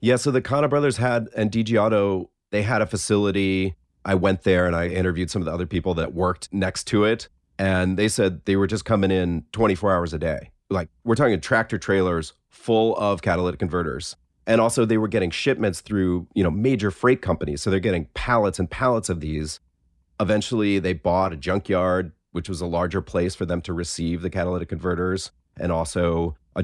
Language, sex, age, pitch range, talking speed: English, male, 30-49, 85-105 Hz, 205 wpm